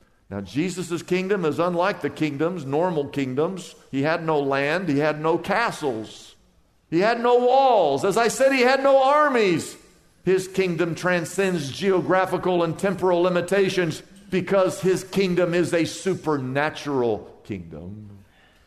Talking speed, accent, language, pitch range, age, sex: 135 wpm, American, English, 140-205 Hz, 50-69, male